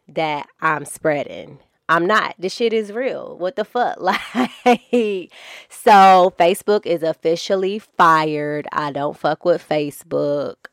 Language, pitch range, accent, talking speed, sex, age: English, 150-170 Hz, American, 130 wpm, female, 20-39